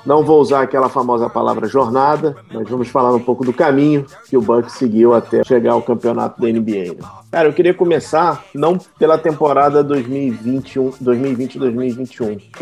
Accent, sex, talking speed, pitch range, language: Brazilian, male, 150 wpm, 115-135 Hz, Portuguese